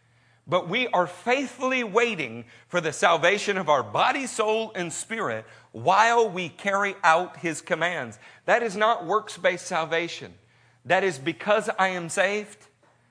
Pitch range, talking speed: 125-180 Hz, 140 wpm